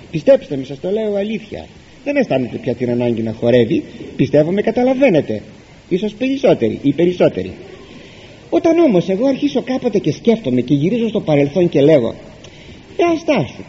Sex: male